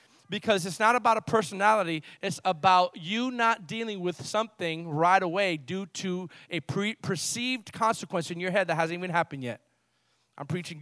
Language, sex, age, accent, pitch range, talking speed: English, male, 30-49, American, 180-240 Hz, 165 wpm